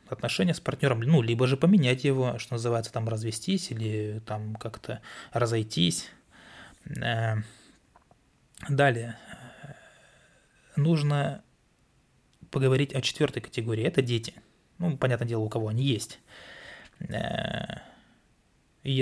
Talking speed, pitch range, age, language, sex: 100 wpm, 115-135 Hz, 20-39, Russian, male